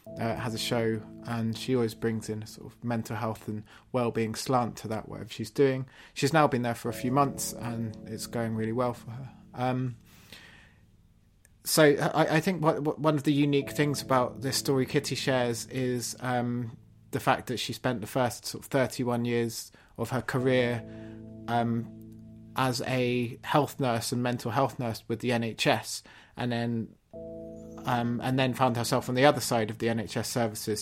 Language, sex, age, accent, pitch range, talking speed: English, male, 20-39, British, 110-130 Hz, 180 wpm